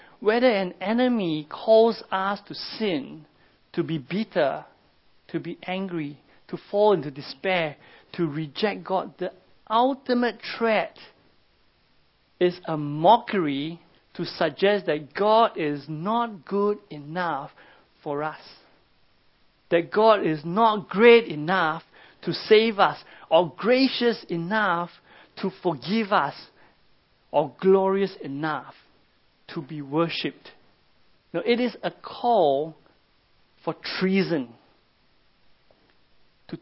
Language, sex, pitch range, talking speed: English, male, 155-210 Hz, 105 wpm